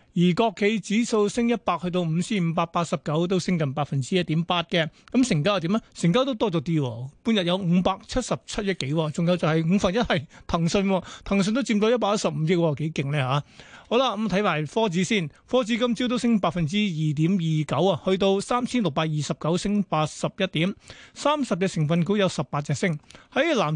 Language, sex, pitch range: Chinese, male, 160-210 Hz